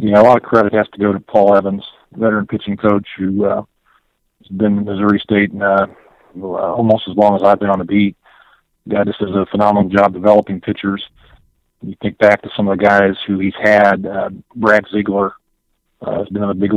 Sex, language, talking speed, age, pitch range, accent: male, English, 215 wpm, 40-59, 100-105 Hz, American